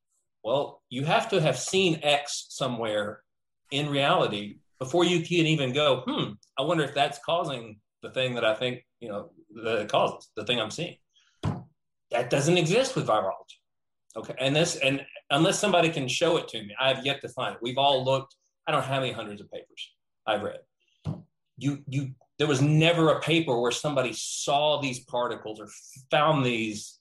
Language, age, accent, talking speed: English, 30-49, American, 185 wpm